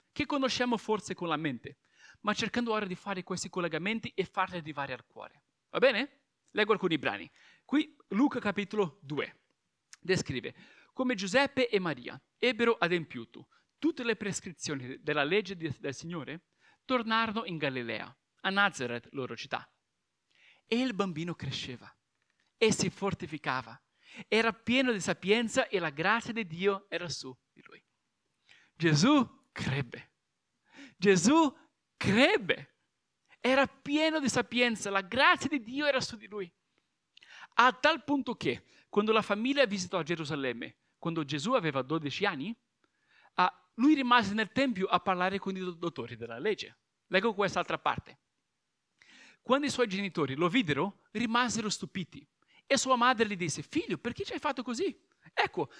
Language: Italian